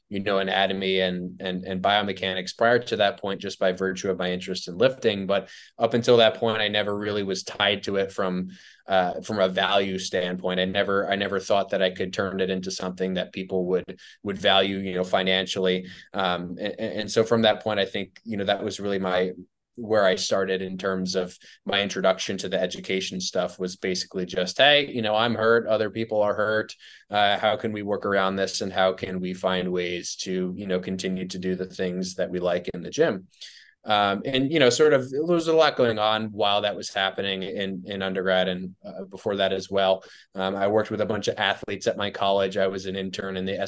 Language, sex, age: English, male, 20-39